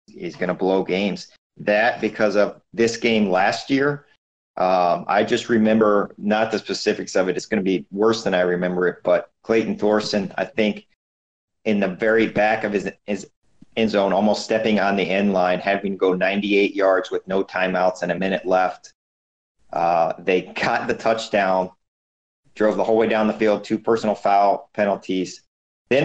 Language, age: English, 40-59